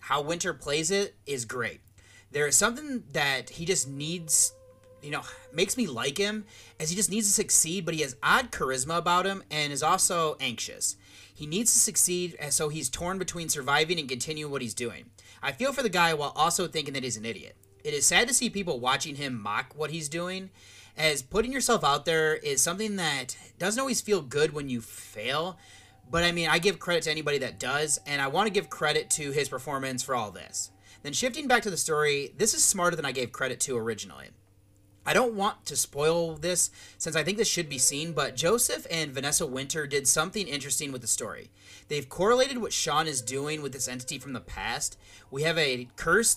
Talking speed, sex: 215 wpm, male